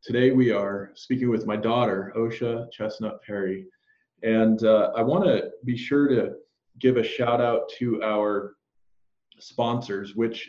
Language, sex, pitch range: English, male, 105-125 Hz